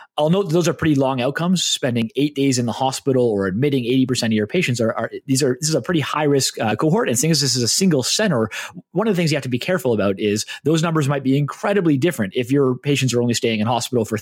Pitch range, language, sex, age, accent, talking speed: 120-160 Hz, English, male, 30-49, American, 280 wpm